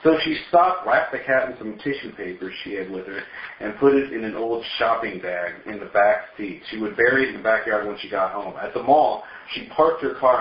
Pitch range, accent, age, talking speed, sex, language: 105-145 Hz, American, 40-59, 255 wpm, male, English